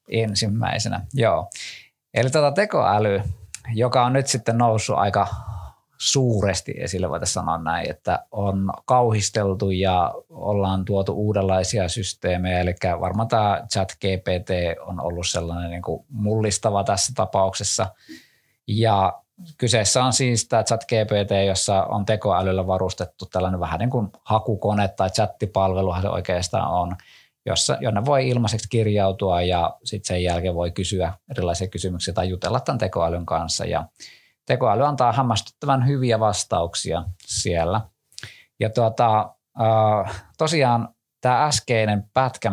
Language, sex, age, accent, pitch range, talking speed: Finnish, male, 20-39, native, 95-115 Hz, 125 wpm